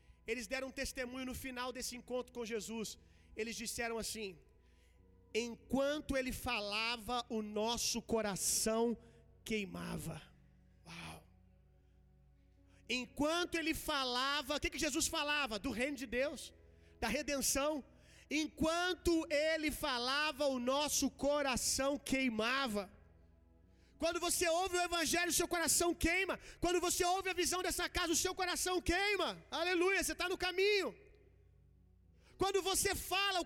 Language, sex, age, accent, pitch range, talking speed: Gujarati, male, 30-49, Brazilian, 220-350 Hz, 125 wpm